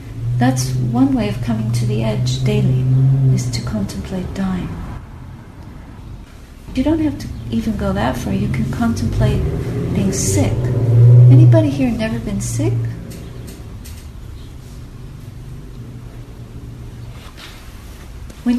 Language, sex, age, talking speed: English, female, 50-69, 105 wpm